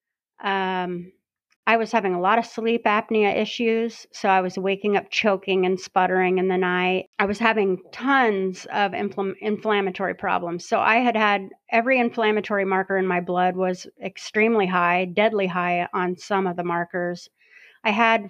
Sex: female